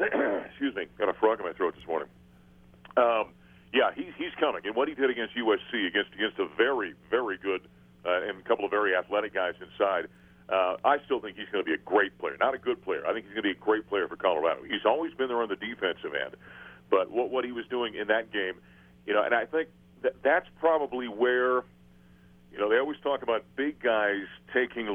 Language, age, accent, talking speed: English, 40-59, American, 235 wpm